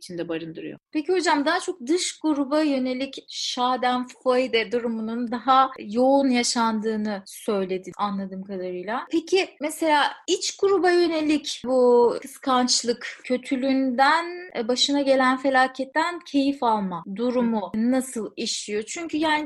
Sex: female